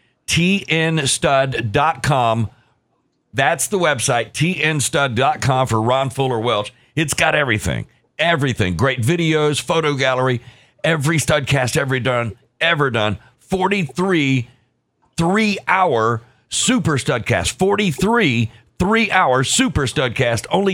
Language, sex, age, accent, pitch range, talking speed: English, male, 50-69, American, 120-155 Hz, 105 wpm